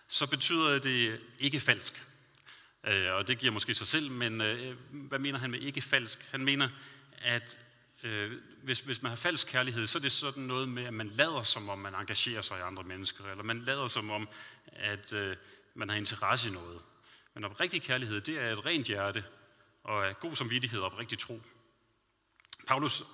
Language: Danish